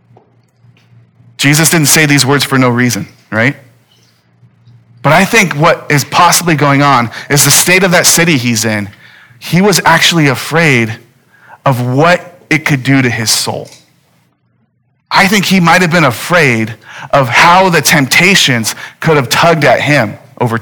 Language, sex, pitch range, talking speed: English, male, 120-160 Hz, 155 wpm